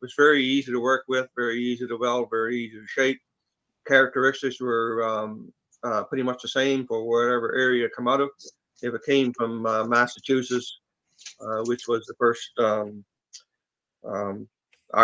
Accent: American